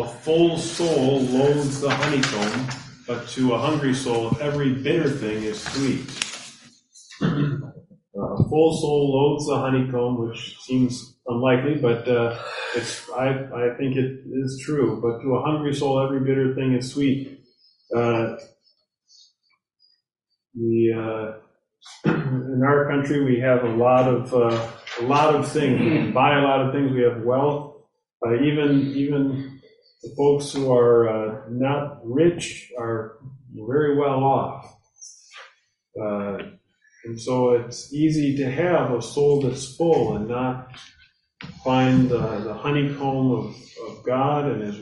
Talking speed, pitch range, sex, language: 140 wpm, 120-145 Hz, male, English